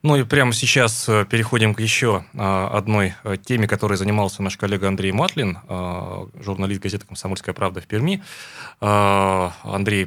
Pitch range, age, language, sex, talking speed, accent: 100-120 Hz, 20-39, Russian, male, 130 wpm, native